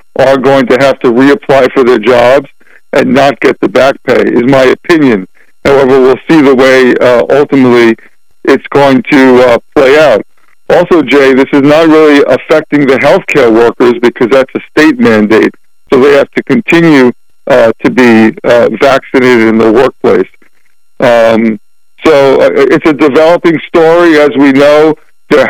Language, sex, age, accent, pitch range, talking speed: English, male, 50-69, American, 130-155 Hz, 160 wpm